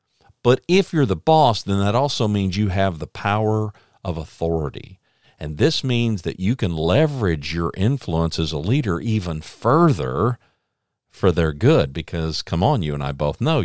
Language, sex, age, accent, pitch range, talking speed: English, male, 50-69, American, 85-120 Hz, 175 wpm